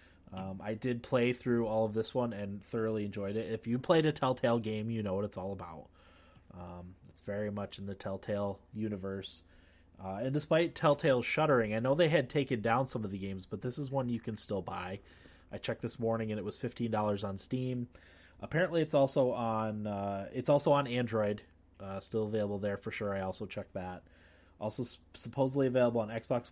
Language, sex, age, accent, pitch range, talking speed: English, male, 20-39, American, 95-125 Hz, 205 wpm